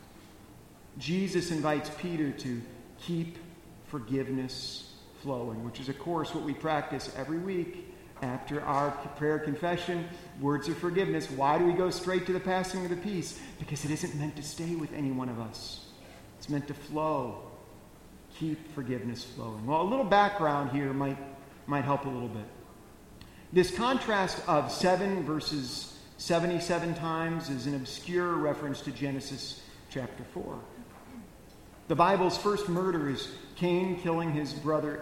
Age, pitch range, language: 40-59, 145-180 Hz, English